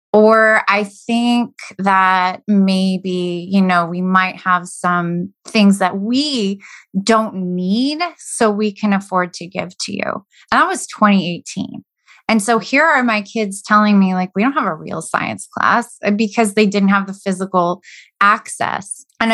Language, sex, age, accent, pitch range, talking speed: English, female, 20-39, American, 185-220 Hz, 160 wpm